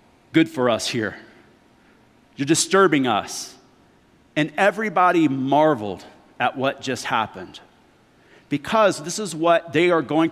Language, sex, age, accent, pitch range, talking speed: English, male, 40-59, American, 130-170 Hz, 120 wpm